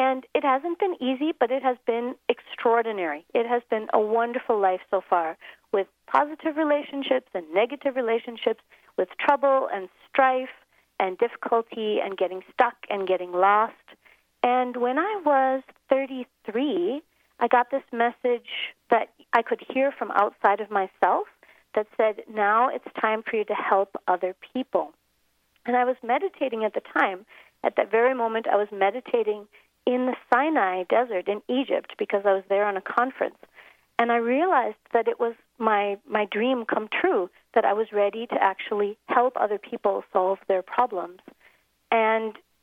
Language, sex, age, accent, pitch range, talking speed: English, female, 40-59, American, 200-260 Hz, 160 wpm